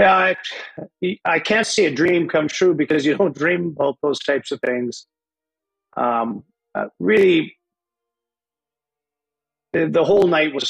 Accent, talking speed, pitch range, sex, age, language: American, 145 wpm, 125-145 Hz, male, 50-69, English